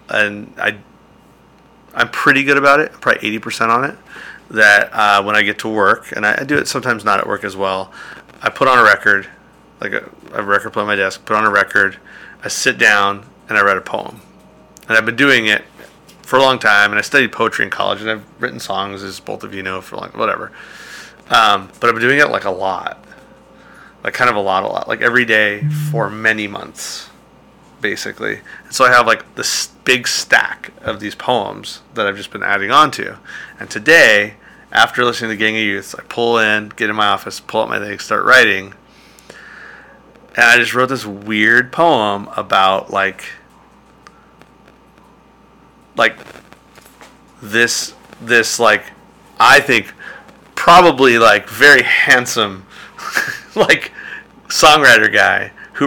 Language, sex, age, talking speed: English, male, 30-49, 180 wpm